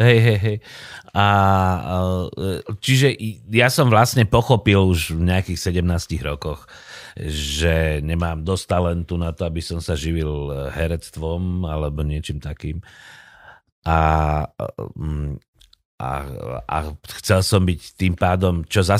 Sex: male